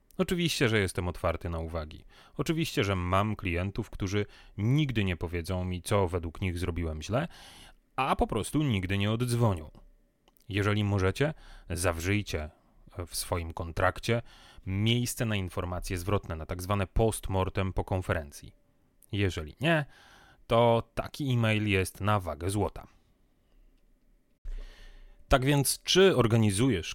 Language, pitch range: Polish, 95-125 Hz